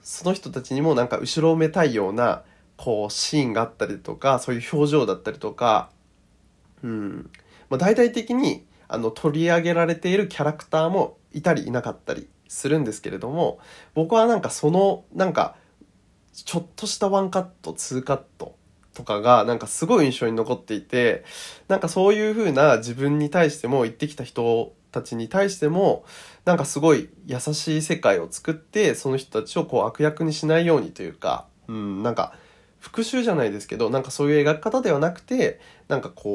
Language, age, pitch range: Japanese, 20-39, 120-170 Hz